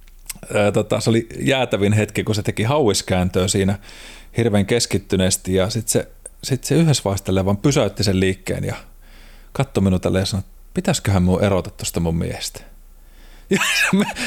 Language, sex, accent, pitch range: Finnish, male, native, 100-120 Hz